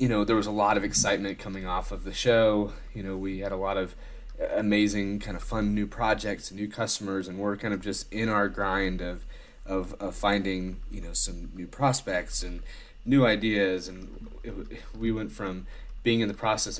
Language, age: English, 30-49